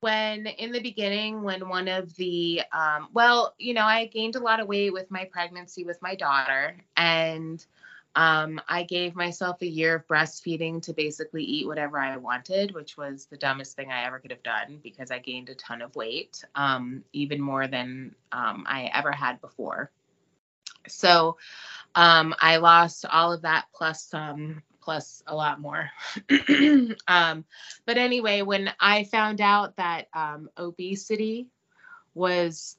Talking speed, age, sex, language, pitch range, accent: 165 wpm, 20-39, female, English, 155-195 Hz, American